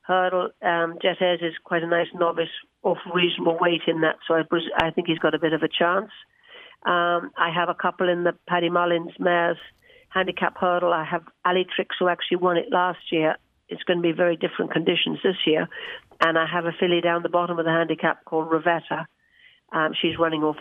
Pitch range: 160-175 Hz